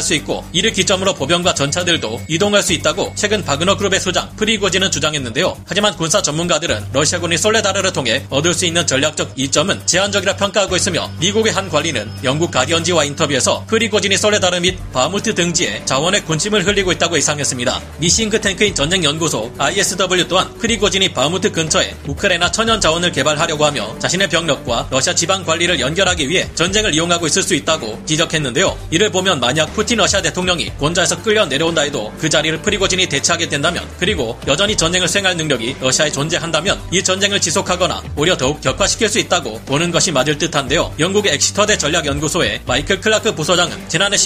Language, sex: Korean, male